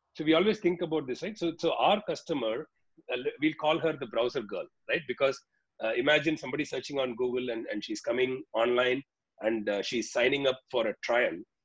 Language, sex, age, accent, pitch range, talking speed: English, male, 40-59, Indian, 130-200 Hz, 200 wpm